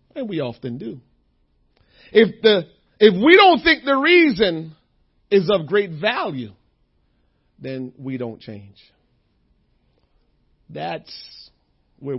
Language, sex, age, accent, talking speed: English, male, 40-59, American, 110 wpm